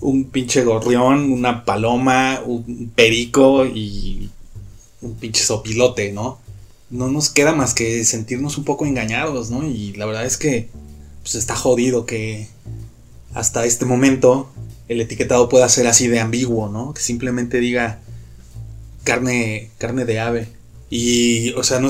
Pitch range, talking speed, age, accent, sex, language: 115-125 Hz, 145 wpm, 20-39, Mexican, male, Spanish